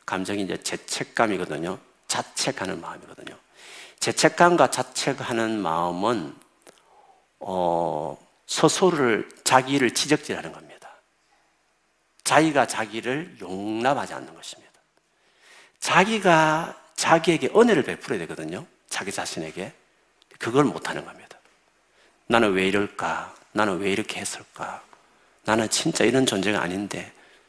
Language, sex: Korean, male